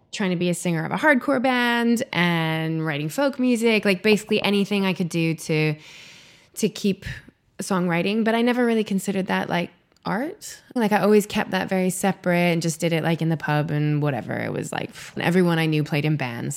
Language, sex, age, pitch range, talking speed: Danish, female, 20-39, 170-220 Hz, 205 wpm